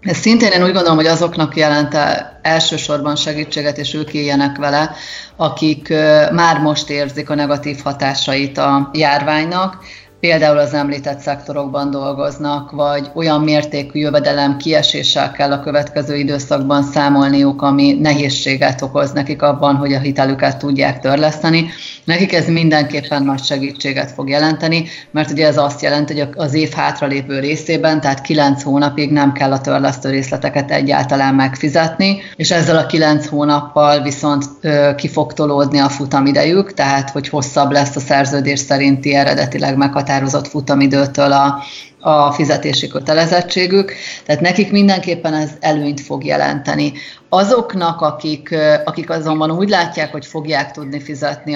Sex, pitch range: female, 140-155 Hz